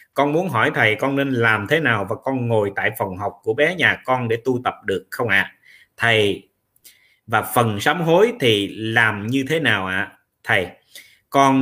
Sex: male